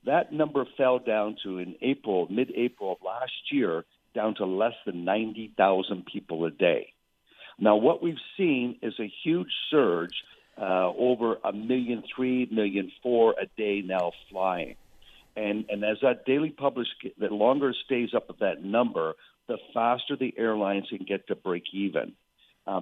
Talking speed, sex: 165 wpm, male